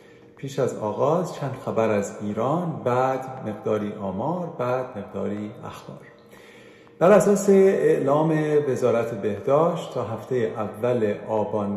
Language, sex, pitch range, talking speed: Persian, male, 110-145 Hz, 110 wpm